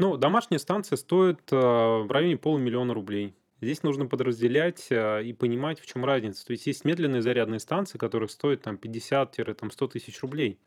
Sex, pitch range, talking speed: male, 115-150 Hz, 170 wpm